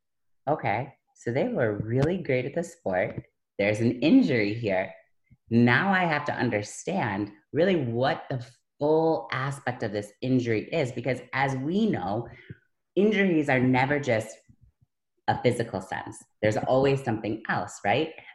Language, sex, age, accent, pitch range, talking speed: English, female, 30-49, American, 100-130 Hz, 140 wpm